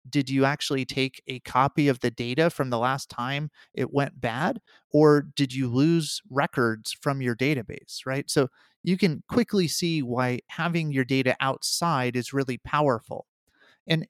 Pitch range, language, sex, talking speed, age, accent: 130-160 Hz, English, male, 165 wpm, 30-49, American